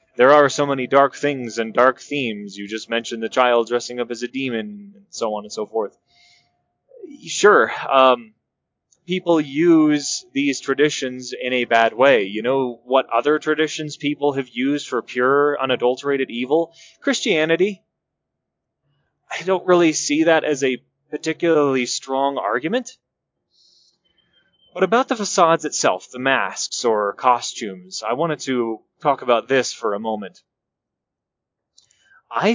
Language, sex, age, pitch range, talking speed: English, male, 20-39, 125-170 Hz, 140 wpm